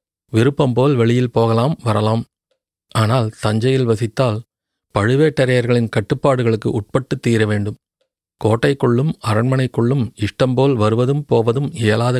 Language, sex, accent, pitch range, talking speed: Tamil, male, native, 115-130 Hz, 95 wpm